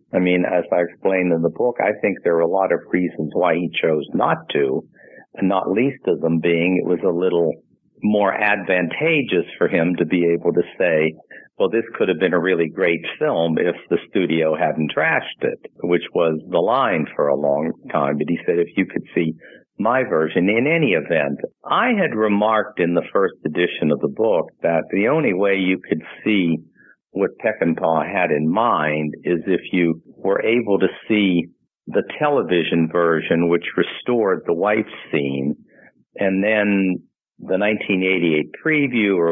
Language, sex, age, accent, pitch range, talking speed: English, male, 50-69, American, 80-95 Hz, 180 wpm